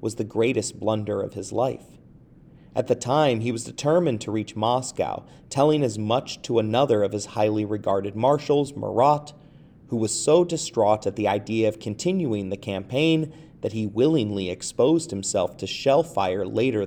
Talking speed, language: 165 wpm, English